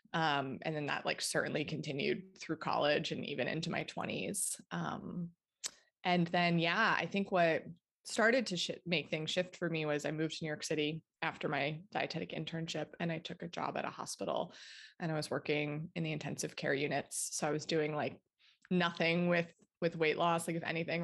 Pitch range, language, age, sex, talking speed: 155-180 Hz, English, 20-39, female, 200 wpm